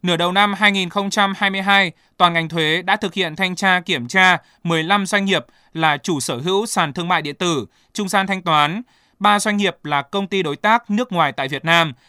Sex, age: male, 20-39